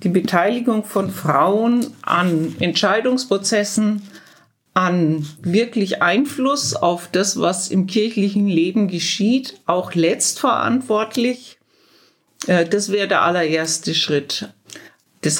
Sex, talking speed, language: female, 95 wpm, German